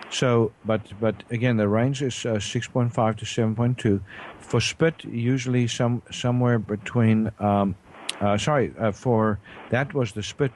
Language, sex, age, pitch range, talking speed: English, male, 50-69, 105-125 Hz, 150 wpm